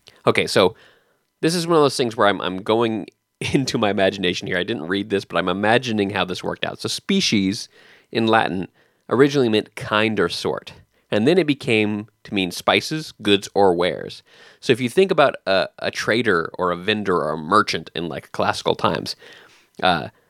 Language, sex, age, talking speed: English, male, 20-39, 190 wpm